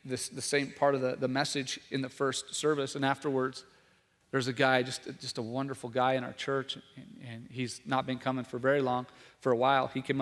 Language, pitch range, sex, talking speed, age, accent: English, 130-155 Hz, male, 225 wpm, 40-59, American